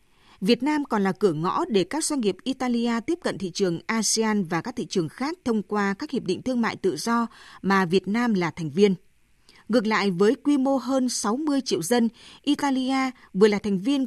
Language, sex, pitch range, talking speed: Vietnamese, female, 195-255 Hz, 215 wpm